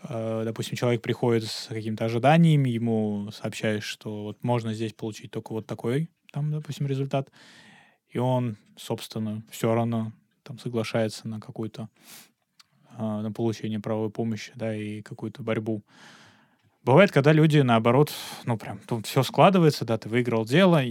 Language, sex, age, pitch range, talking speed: Russian, male, 20-39, 110-140 Hz, 140 wpm